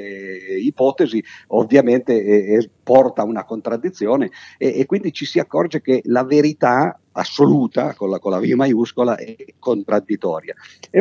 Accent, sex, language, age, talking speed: native, male, Italian, 50-69, 145 wpm